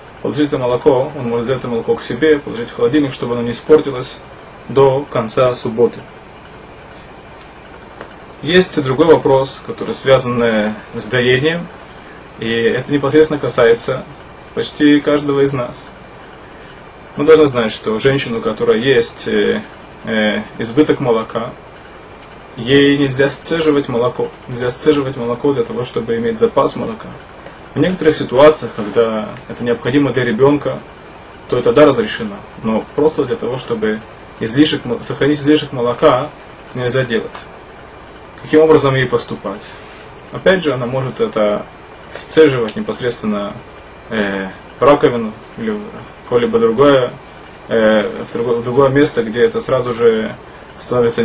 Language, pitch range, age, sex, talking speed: Russian, 120-155 Hz, 20-39, male, 130 wpm